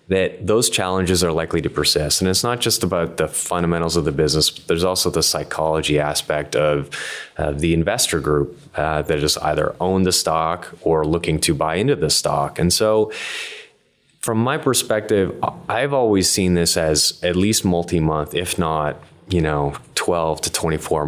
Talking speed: 175 wpm